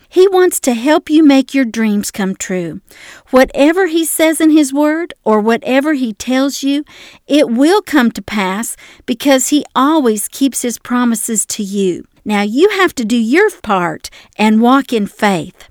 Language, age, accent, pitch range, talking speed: English, 50-69, American, 215-290 Hz, 170 wpm